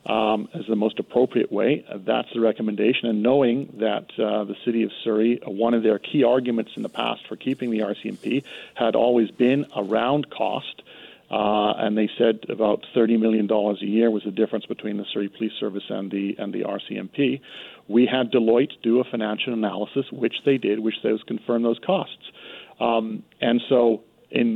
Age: 50-69